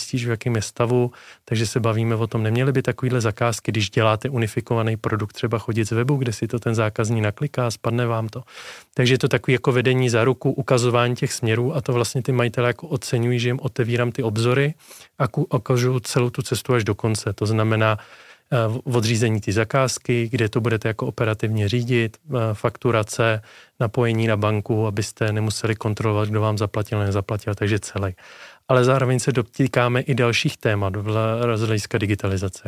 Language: Czech